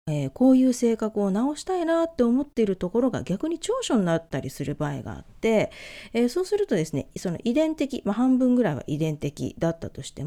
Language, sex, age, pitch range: Japanese, female, 40-59, 165-275 Hz